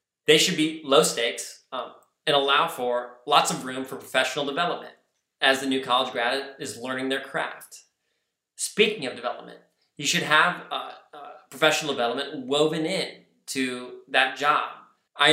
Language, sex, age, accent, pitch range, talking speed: English, male, 20-39, American, 125-155 Hz, 155 wpm